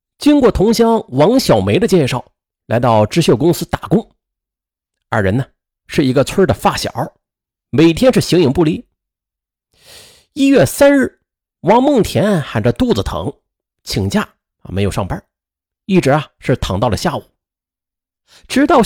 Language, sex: Chinese, male